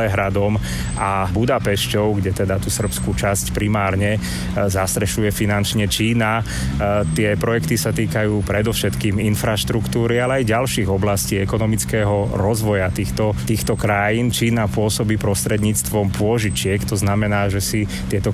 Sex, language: male, Slovak